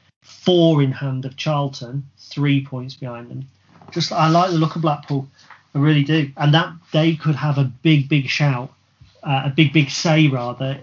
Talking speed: 190 wpm